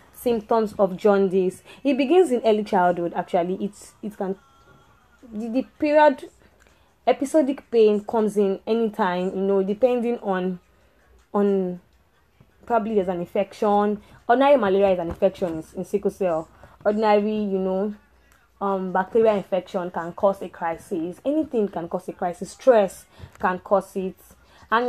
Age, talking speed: 10-29, 140 wpm